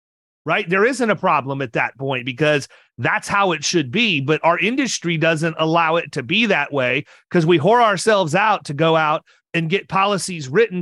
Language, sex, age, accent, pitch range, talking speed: English, male, 30-49, American, 160-215 Hz, 200 wpm